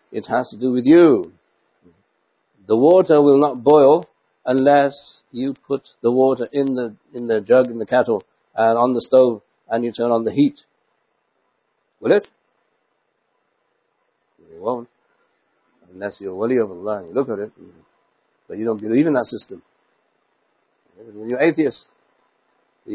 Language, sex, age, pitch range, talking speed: English, male, 60-79, 125-175 Hz, 150 wpm